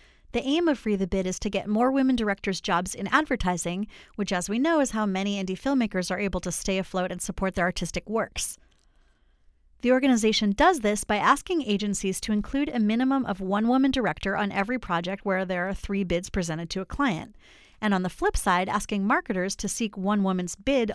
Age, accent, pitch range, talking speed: 30-49, American, 190-245 Hz, 210 wpm